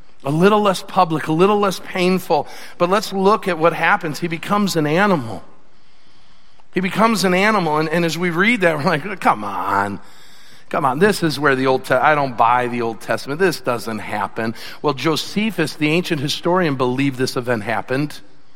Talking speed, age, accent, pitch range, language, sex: 190 wpm, 50-69, American, 155-200 Hz, English, male